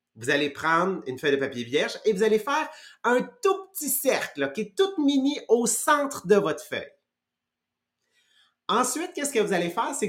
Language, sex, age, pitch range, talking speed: English, male, 30-49, 165-235 Hz, 195 wpm